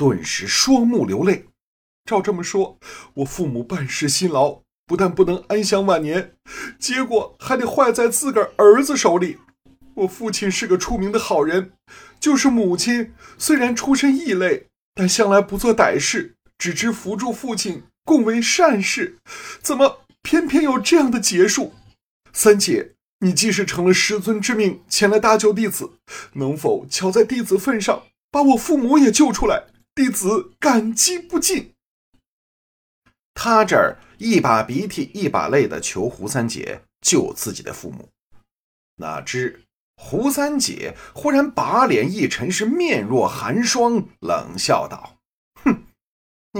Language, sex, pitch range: Chinese, male, 190-275 Hz